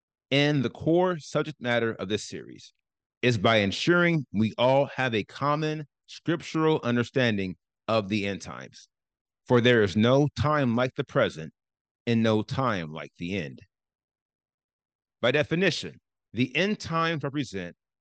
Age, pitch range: 30-49, 105-150 Hz